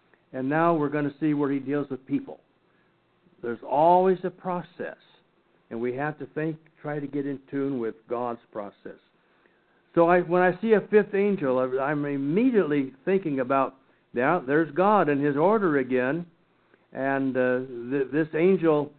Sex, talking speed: male, 160 wpm